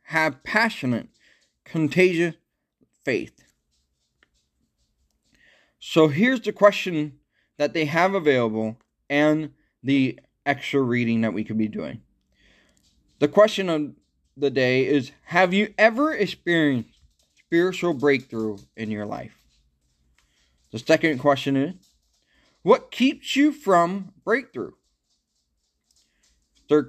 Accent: American